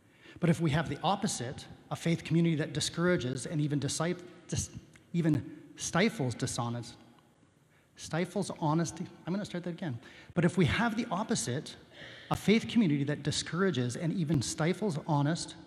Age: 30-49